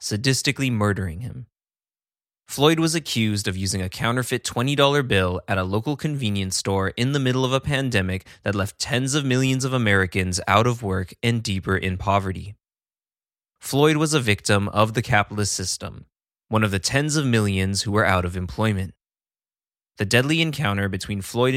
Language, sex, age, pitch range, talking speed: English, male, 20-39, 95-125 Hz, 170 wpm